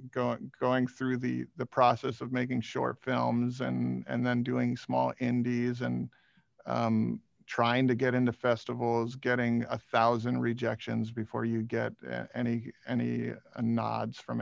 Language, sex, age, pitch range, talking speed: English, male, 40-59, 115-130 Hz, 145 wpm